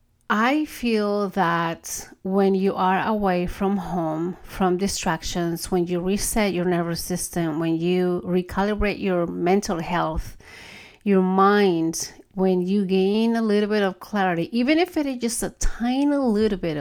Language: English